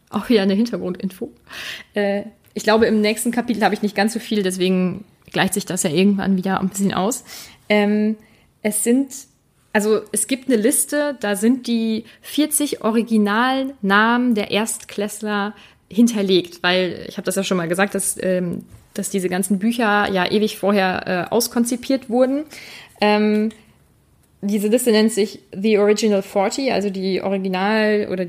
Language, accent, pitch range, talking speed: German, German, 195-230 Hz, 145 wpm